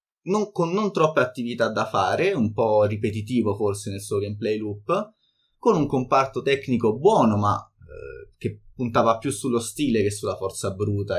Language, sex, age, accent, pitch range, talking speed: Italian, male, 20-39, native, 110-165 Hz, 165 wpm